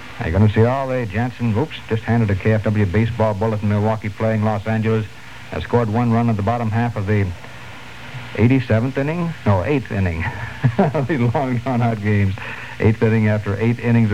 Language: English